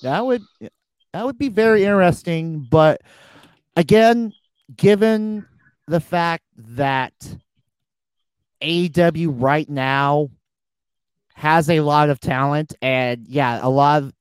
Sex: male